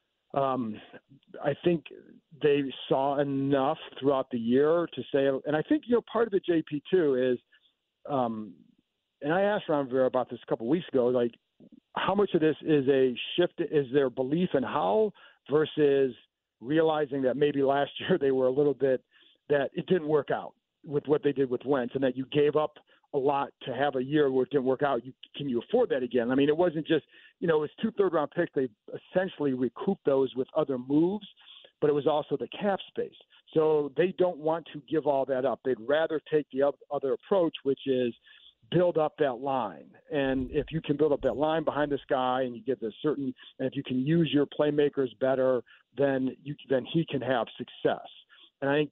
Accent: American